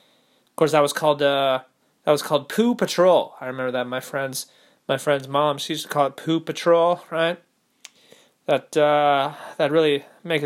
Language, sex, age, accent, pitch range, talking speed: English, male, 20-39, American, 145-170 Hz, 185 wpm